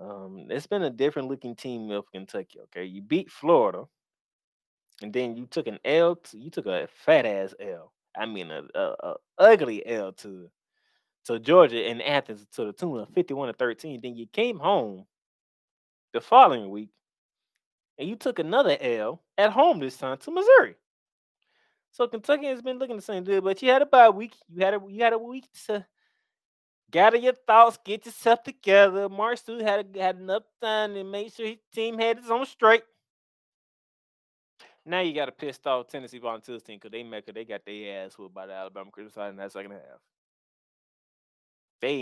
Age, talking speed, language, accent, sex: 20-39, 190 wpm, English, American, male